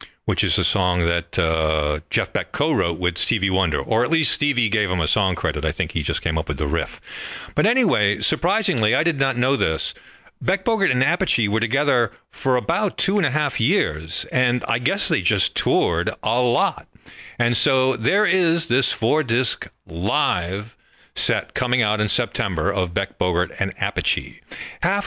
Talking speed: 185 wpm